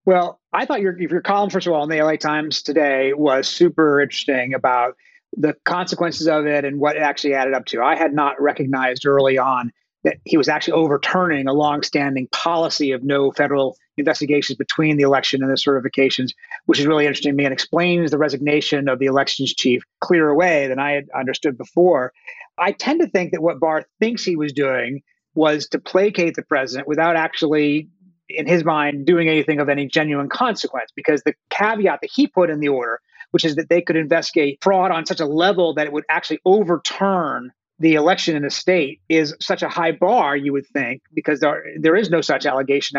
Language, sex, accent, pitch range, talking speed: English, male, American, 140-170 Hz, 205 wpm